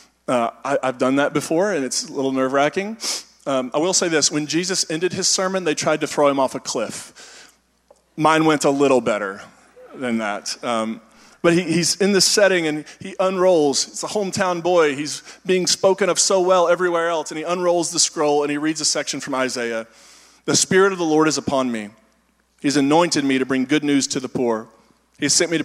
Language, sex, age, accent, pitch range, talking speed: English, male, 20-39, American, 125-165 Hz, 210 wpm